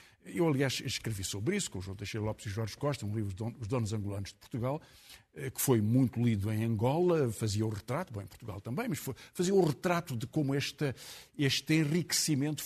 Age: 50-69